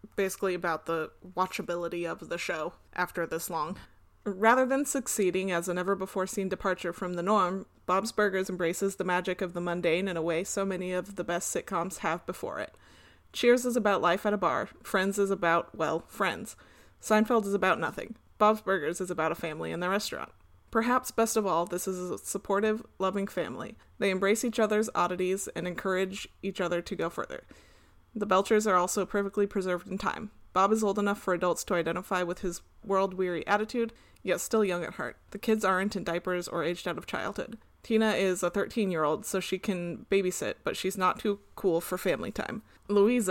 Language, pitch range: English, 175-205 Hz